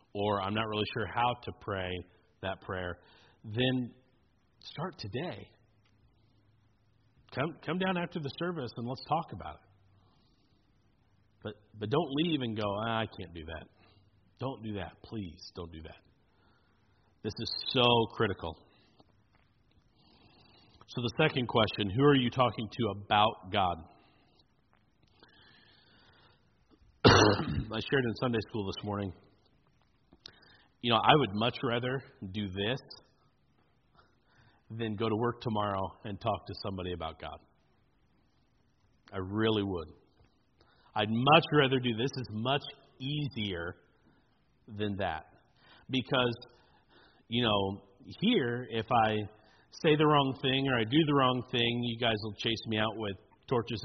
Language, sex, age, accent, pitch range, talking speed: English, male, 40-59, American, 100-125 Hz, 135 wpm